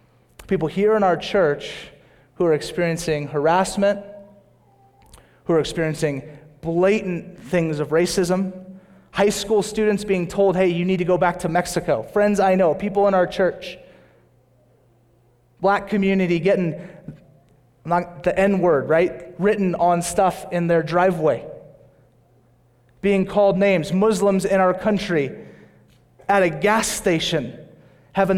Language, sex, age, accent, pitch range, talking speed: English, male, 30-49, American, 160-195 Hz, 130 wpm